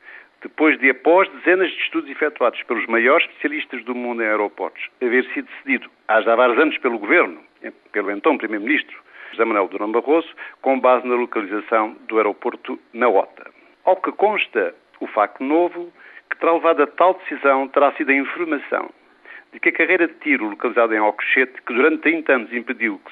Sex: male